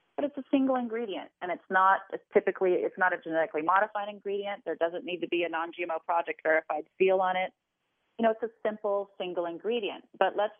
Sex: female